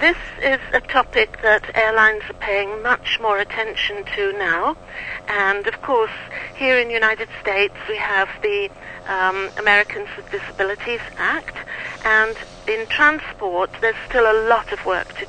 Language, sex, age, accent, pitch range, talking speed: English, female, 60-79, British, 205-265 Hz, 155 wpm